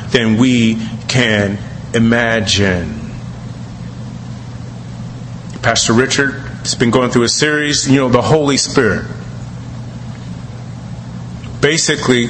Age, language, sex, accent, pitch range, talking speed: 40-59, English, male, American, 105-140 Hz, 90 wpm